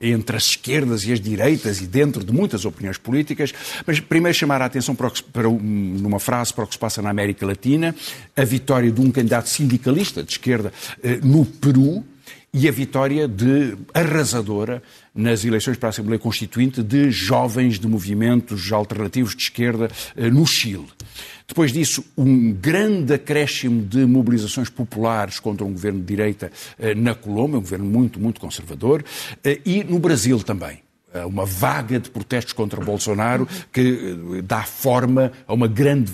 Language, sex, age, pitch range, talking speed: Portuguese, male, 50-69, 105-130 Hz, 165 wpm